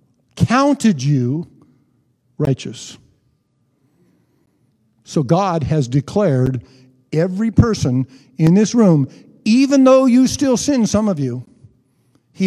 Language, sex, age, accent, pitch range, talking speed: English, male, 50-69, American, 135-190 Hz, 100 wpm